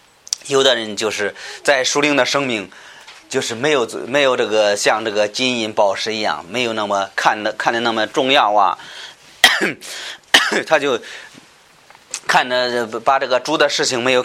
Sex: male